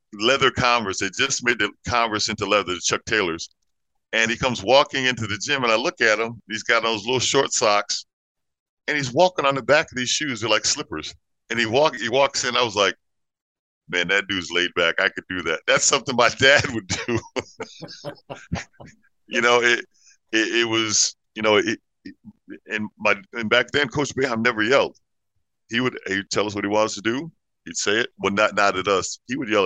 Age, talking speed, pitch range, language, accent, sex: 50-69, 210 wpm, 100-130 Hz, English, American, male